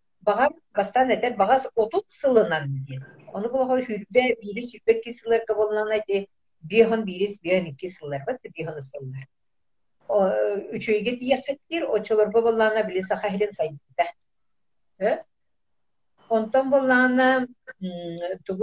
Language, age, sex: Russian, 50-69, female